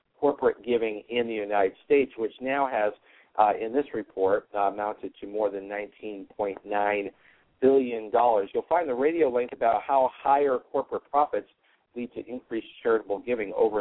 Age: 50-69